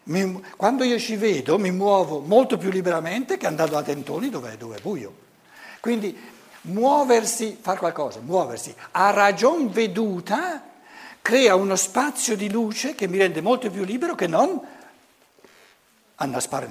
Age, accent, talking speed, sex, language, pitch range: 60-79, native, 140 wpm, male, Italian, 175-260 Hz